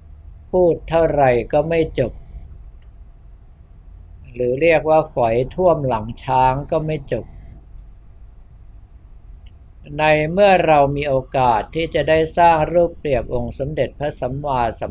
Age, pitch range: 60-79, 95-145 Hz